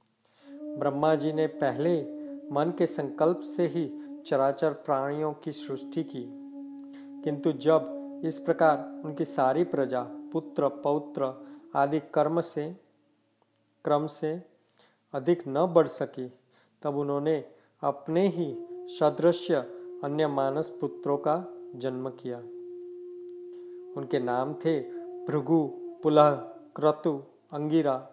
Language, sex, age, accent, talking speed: Hindi, male, 40-59, native, 110 wpm